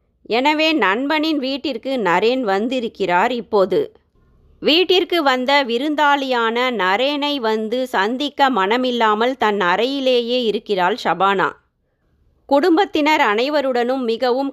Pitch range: 220-280 Hz